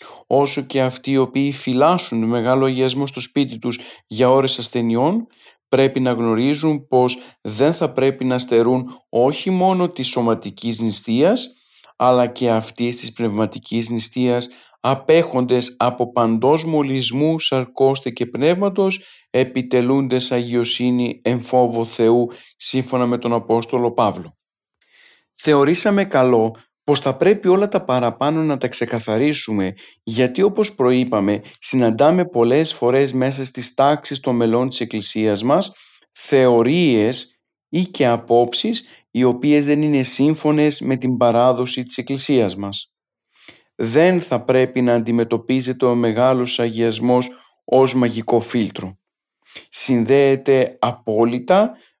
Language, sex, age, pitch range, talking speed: Greek, male, 40-59, 120-140 Hz, 120 wpm